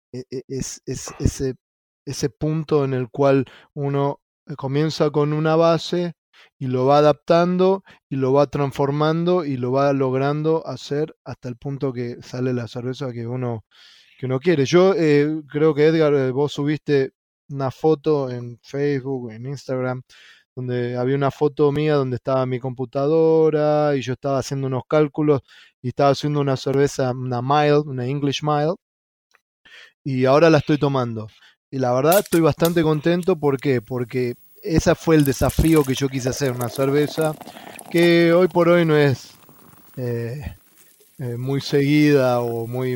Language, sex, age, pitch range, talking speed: Spanish, male, 20-39, 130-155 Hz, 160 wpm